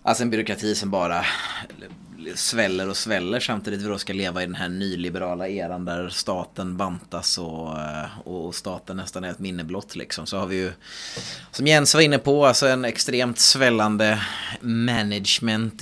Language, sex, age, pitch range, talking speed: Swedish, male, 20-39, 90-120 Hz, 165 wpm